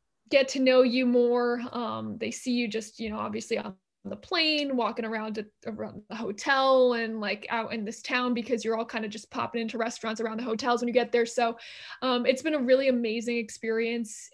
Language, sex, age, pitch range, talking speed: English, female, 20-39, 235-265 Hz, 215 wpm